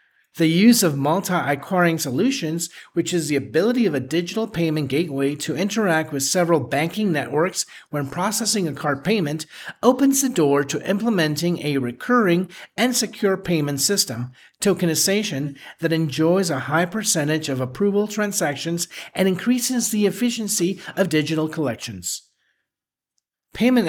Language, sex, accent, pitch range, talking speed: English, male, American, 145-195 Hz, 135 wpm